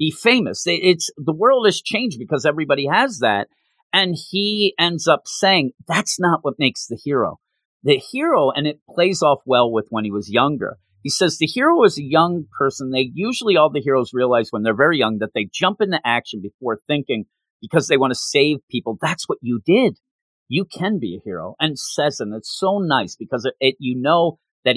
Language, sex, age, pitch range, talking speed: English, male, 40-59, 110-165 Hz, 210 wpm